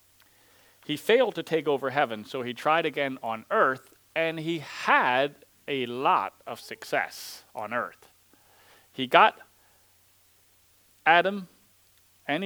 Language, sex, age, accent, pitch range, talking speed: English, male, 40-59, American, 100-150 Hz, 120 wpm